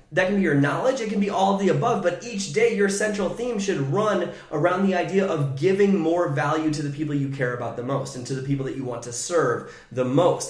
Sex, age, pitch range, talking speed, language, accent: male, 20-39, 135-180 Hz, 265 wpm, English, American